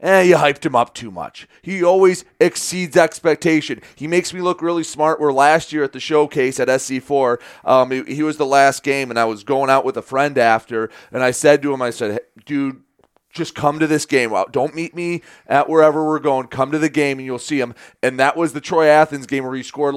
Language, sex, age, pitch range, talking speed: English, male, 30-49, 130-160 Hz, 245 wpm